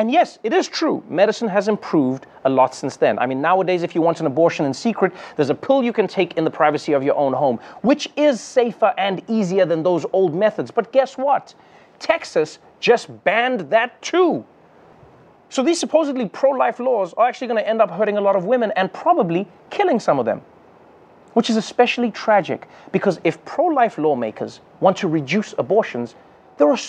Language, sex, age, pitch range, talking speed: English, male, 30-49, 180-260 Hz, 195 wpm